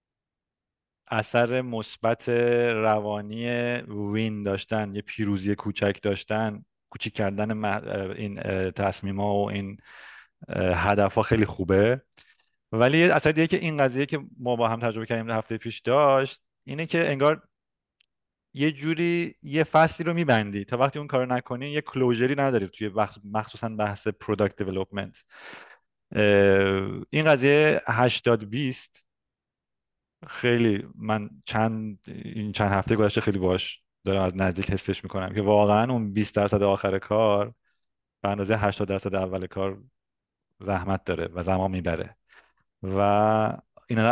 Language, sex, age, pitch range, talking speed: Persian, male, 30-49, 100-120 Hz, 125 wpm